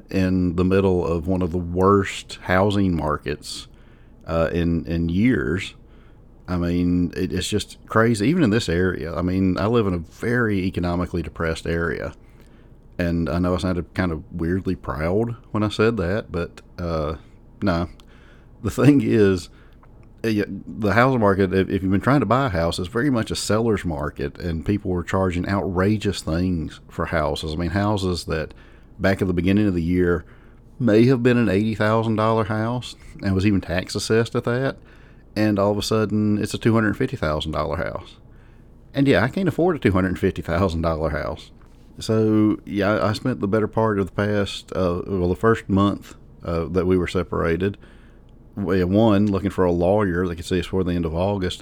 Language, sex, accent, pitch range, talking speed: English, male, American, 85-110 Hz, 175 wpm